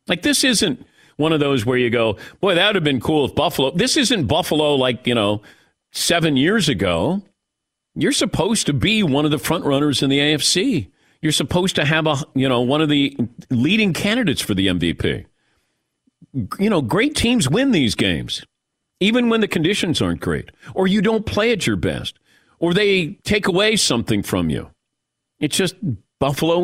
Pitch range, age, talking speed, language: 125-185 Hz, 50-69, 185 wpm, English